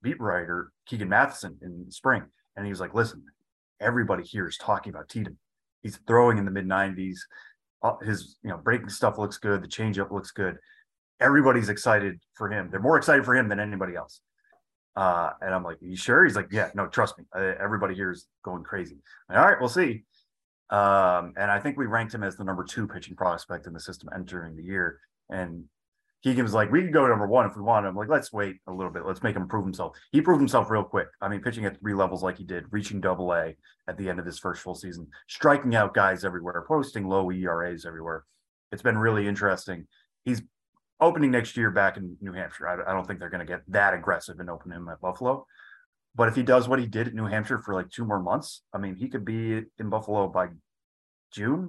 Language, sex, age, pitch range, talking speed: English, male, 30-49, 90-115 Hz, 225 wpm